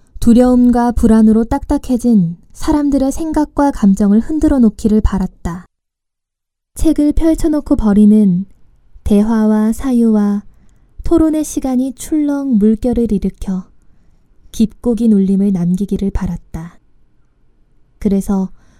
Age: 20-39